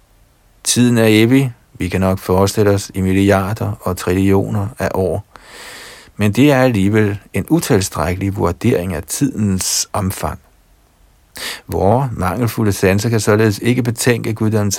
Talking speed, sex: 130 wpm, male